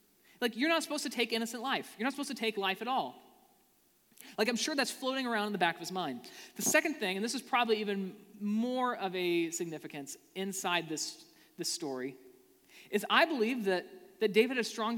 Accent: American